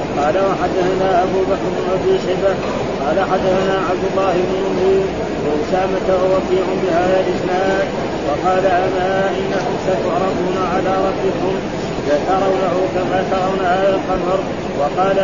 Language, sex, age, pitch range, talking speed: Arabic, male, 30-49, 185-190 Hz, 120 wpm